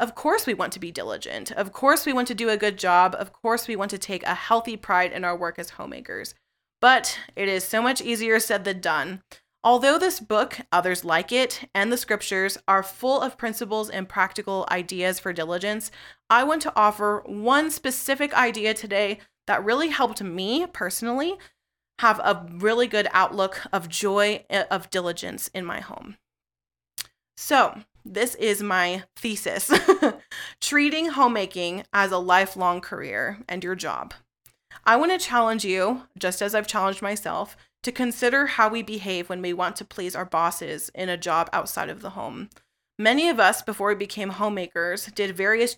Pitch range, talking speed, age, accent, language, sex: 185-235 Hz, 175 wpm, 20-39, American, English, female